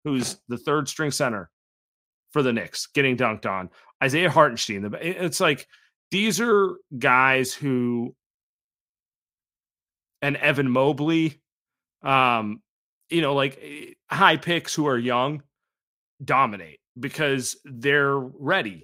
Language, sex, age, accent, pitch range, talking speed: English, male, 30-49, American, 120-150 Hz, 110 wpm